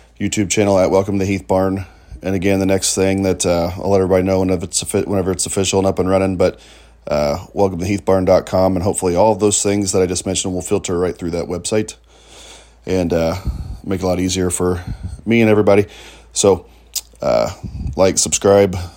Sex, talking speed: male, 205 wpm